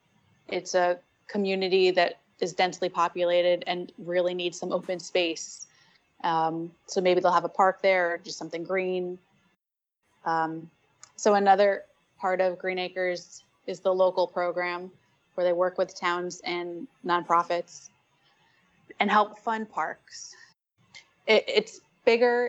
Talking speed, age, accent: 130 wpm, 20-39, American